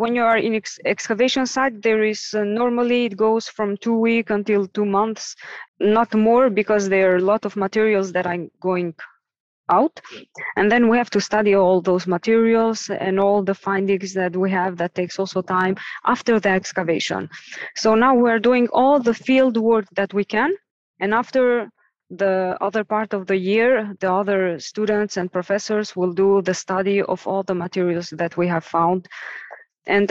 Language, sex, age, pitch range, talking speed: English, female, 20-39, 185-225 Hz, 180 wpm